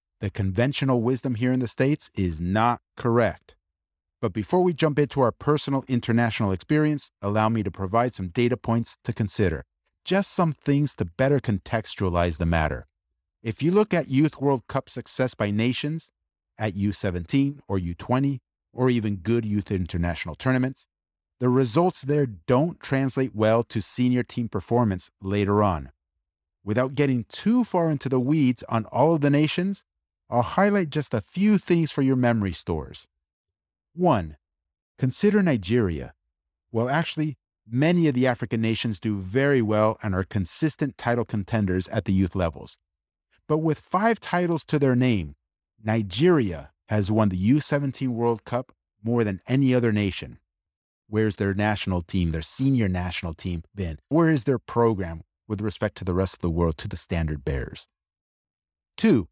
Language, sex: English, male